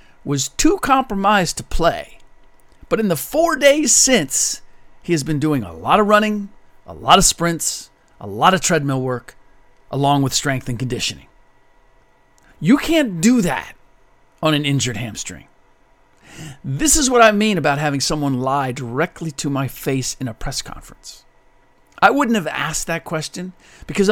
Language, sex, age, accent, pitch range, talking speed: English, male, 50-69, American, 135-185 Hz, 160 wpm